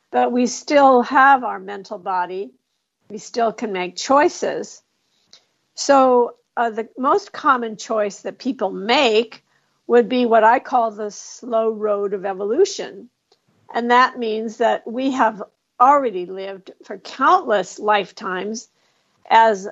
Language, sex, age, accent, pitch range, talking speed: English, female, 50-69, American, 210-245 Hz, 130 wpm